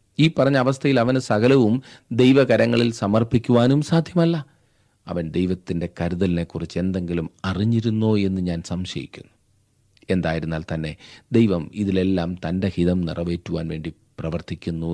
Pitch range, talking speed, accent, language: 90-120 Hz, 100 wpm, native, Malayalam